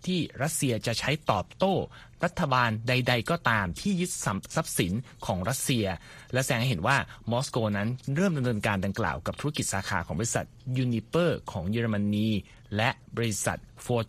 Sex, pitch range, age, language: male, 110-150 Hz, 30-49, Thai